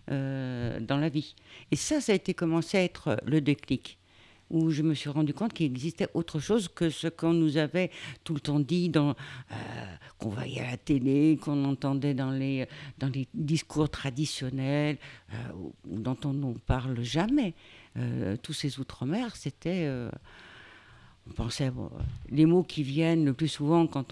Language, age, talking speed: French, 60-79, 180 wpm